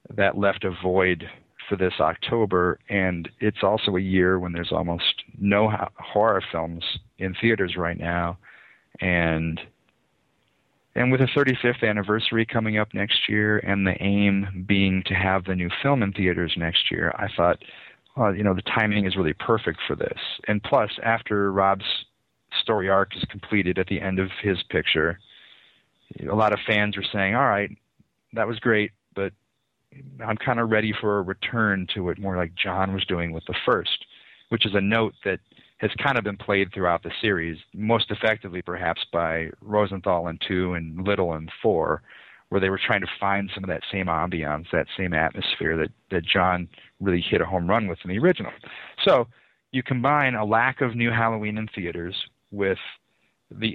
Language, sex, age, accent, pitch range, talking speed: English, male, 40-59, American, 90-110 Hz, 180 wpm